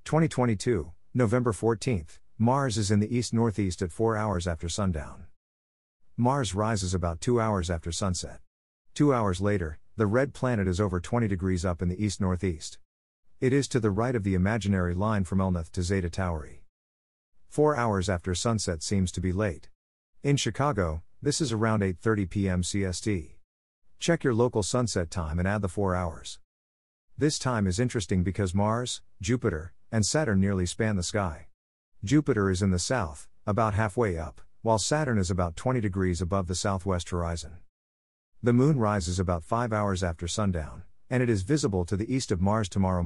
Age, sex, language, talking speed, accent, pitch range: 50-69, male, English, 170 wpm, American, 85-115 Hz